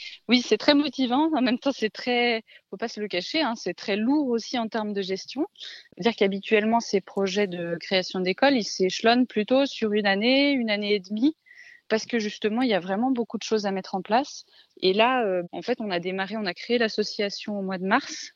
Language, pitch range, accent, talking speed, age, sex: French, 190-235 Hz, French, 230 wpm, 20-39, female